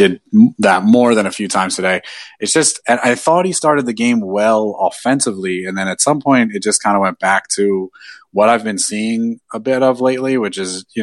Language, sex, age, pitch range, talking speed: English, male, 30-49, 90-110 Hz, 230 wpm